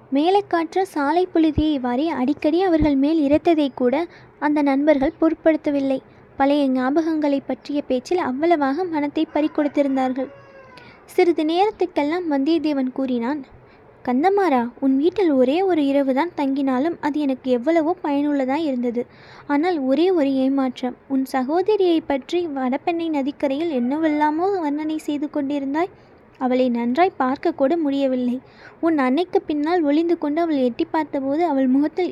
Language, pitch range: Tamil, 270-330 Hz